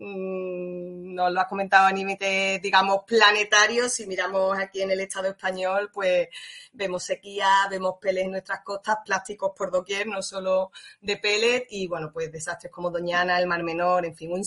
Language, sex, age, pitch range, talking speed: Spanish, female, 20-39, 185-225 Hz, 175 wpm